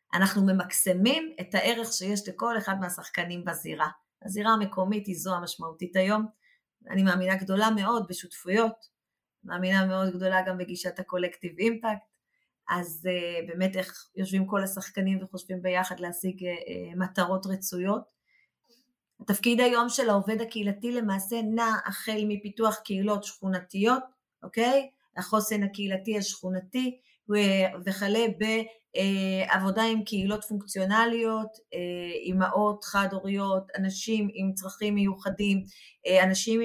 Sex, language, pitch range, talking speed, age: female, Hebrew, 190-220 Hz, 105 wpm, 30-49